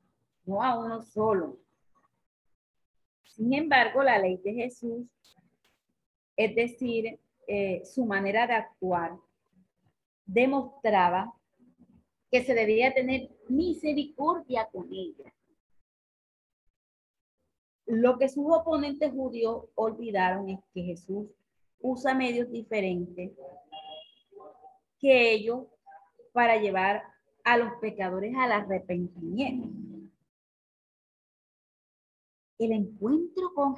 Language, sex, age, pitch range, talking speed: Spanish, female, 30-49, 190-255 Hz, 85 wpm